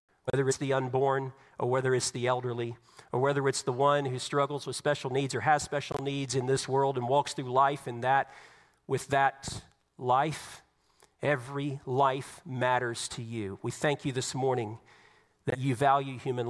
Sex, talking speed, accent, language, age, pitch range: male, 180 wpm, American, English, 40-59, 125-145 Hz